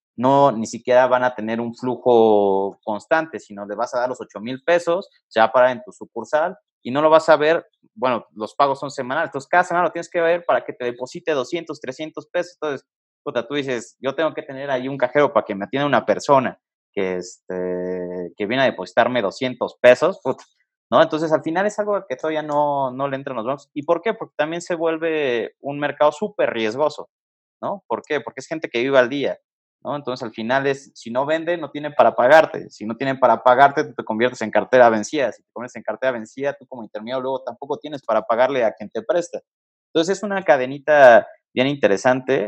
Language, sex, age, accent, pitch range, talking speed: Spanish, male, 30-49, Mexican, 110-155 Hz, 225 wpm